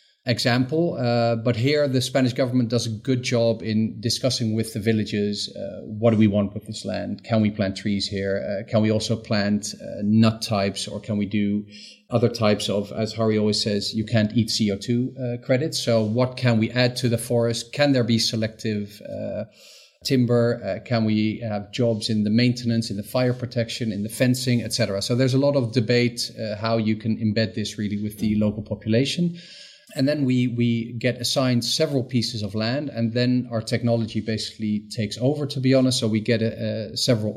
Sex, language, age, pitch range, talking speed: male, English, 40-59, 110-125 Hz, 205 wpm